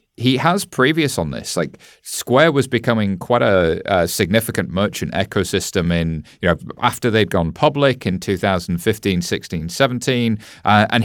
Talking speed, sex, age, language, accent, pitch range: 150 wpm, male, 30-49, English, British, 95-125 Hz